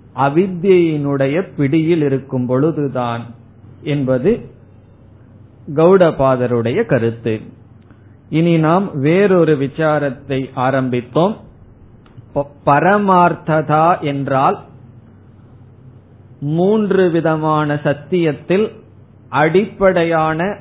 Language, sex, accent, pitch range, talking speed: Tamil, male, native, 125-175 Hz, 50 wpm